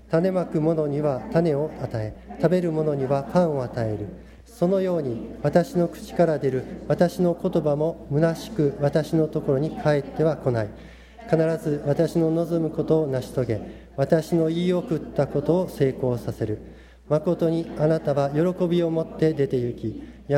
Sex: male